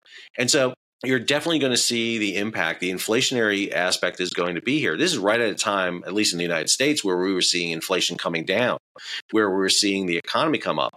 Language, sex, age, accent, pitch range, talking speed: English, male, 40-59, American, 95-115 Hz, 240 wpm